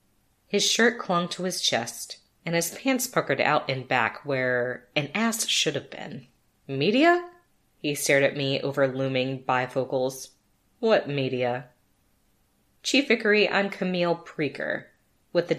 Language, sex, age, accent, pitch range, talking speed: English, female, 20-39, American, 135-185 Hz, 140 wpm